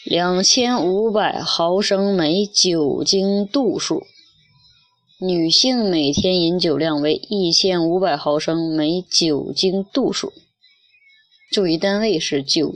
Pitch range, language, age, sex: 155-205 Hz, Chinese, 20-39, female